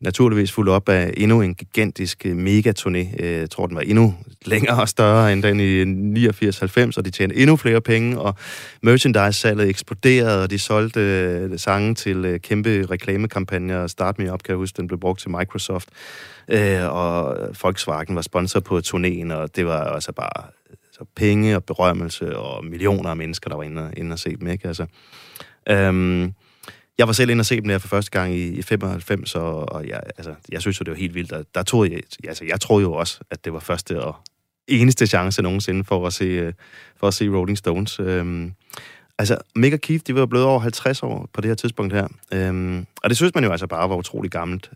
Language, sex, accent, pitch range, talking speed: Danish, male, native, 90-110 Hz, 200 wpm